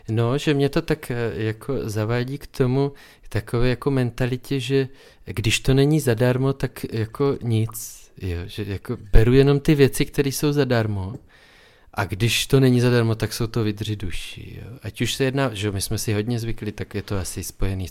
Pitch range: 100-120 Hz